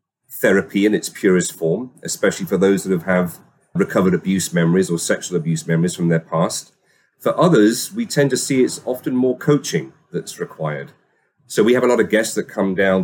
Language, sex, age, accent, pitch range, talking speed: English, male, 40-59, British, 85-105 Hz, 195 wpm